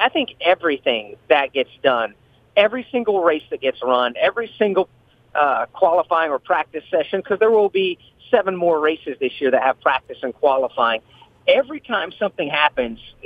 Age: 40-59